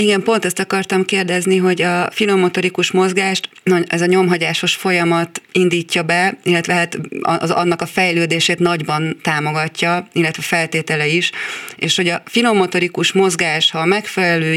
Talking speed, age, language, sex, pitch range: 140 wpm, 30-49, Hungarian, female, 160-180 Hz